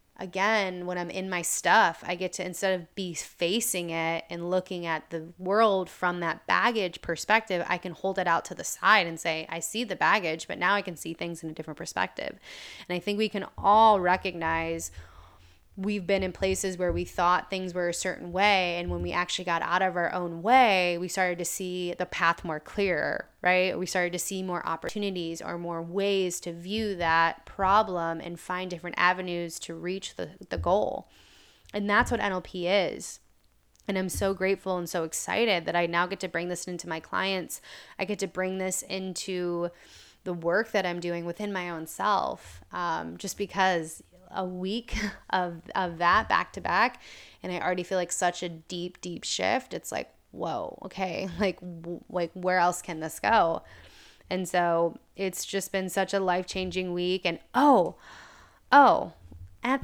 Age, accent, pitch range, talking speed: 20-39, American, 170-190 Hz, 190 wpm